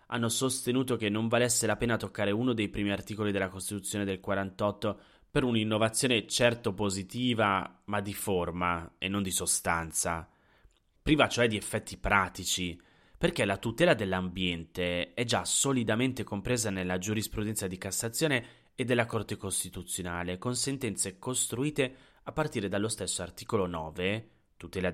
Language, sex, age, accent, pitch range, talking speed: Italian, male, 30-49, native, 95-115 Hz, 140 wpm